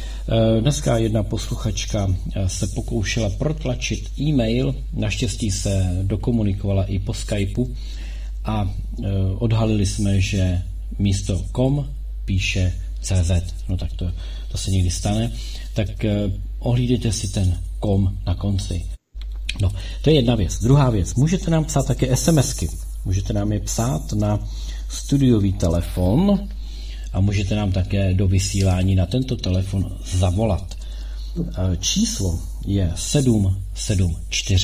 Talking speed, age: 115 wpm, 40-59